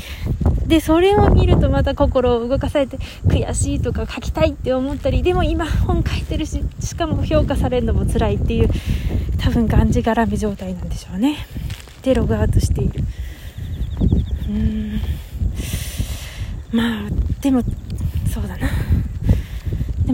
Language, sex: Japanese, female